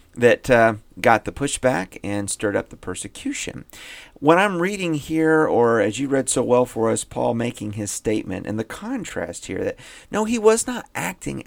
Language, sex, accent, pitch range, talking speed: English, male, American, 105-135 Hz, 190 wpm